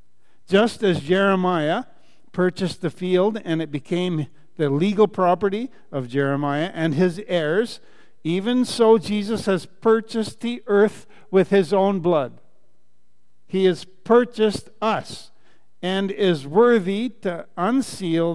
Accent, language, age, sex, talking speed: American, English, 50-69, male, 120 wpm